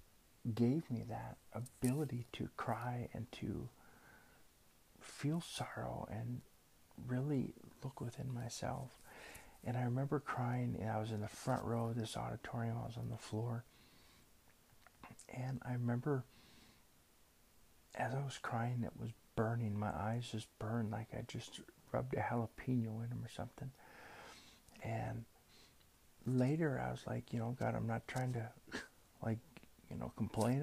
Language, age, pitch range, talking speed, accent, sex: English, 50-69, 110-130 Hz, 145 wpm, American, male